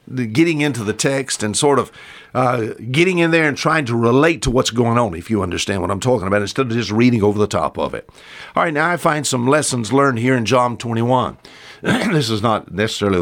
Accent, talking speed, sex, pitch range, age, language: American, 230 wpm, male, 105-150 Hz, 50-69, English